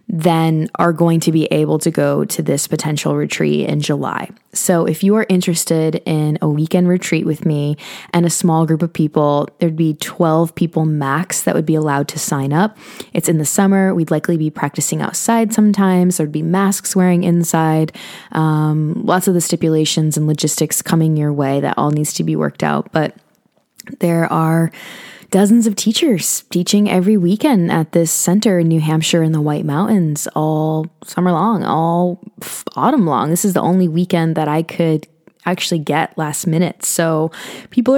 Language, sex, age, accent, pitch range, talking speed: English, female, 20-39, American, 155-185 Hz, 180 wpm